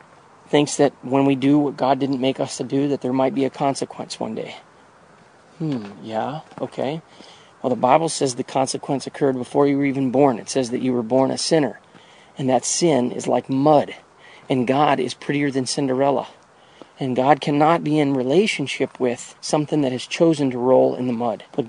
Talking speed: 200 wpm